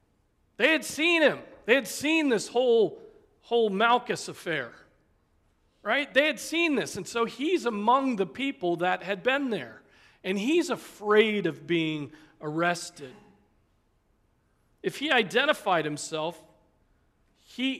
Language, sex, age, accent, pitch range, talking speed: English, male, 40-59, American, 140-230 Hz, 130 wpm